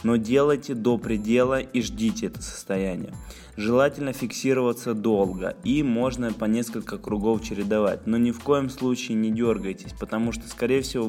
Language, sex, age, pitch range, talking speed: Russian, male, 20-39, 110-125 Hz, 150 wpm